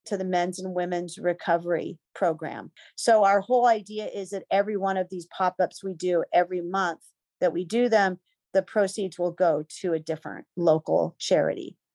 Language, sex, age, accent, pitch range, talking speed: English, female, 40-59, American, 180-205 Hz, 175 wpm